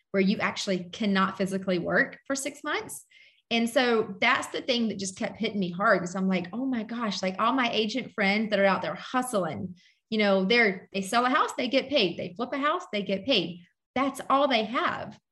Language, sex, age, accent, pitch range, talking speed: English, female, 30-49, American, 195-245 Hz, 225 wpm